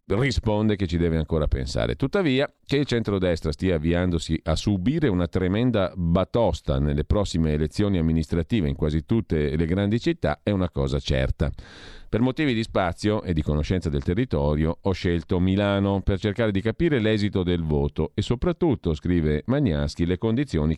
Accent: native